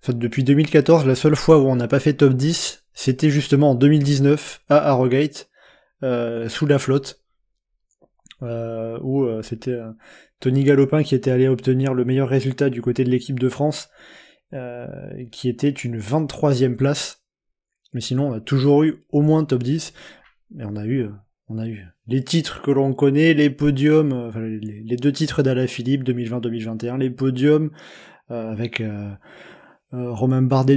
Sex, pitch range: male, 125-145 Hz